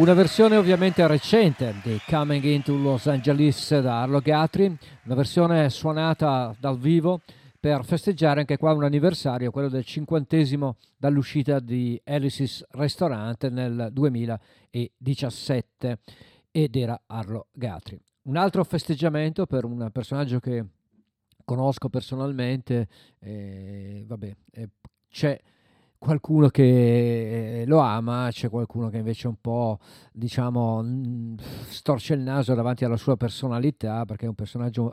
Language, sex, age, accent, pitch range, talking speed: Italian, male, 50-69, native, 115-145 Hz, 120 wpm